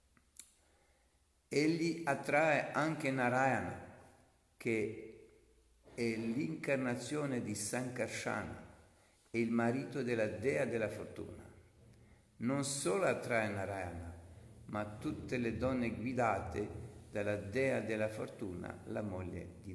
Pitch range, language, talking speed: 95-125 Hz, Italian, 95 wpm